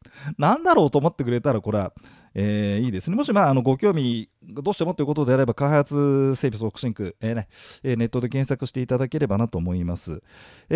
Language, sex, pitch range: Japanese, male, 110-185 Hz